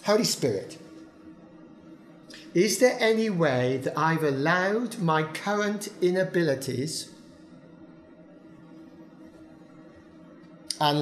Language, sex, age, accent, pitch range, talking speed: English, male, 50-69, British, 140-165 Hz, 70 wpm